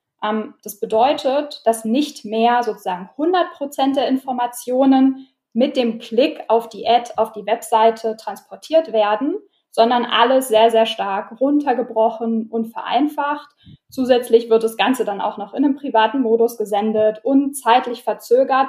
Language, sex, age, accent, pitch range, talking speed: German, female, 10-29, German, 220-260 Hz, 135 wpm